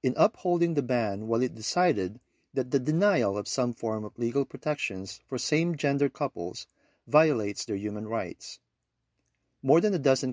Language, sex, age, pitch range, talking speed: English, male, 50-69, 115-155 Hz, 165 wpm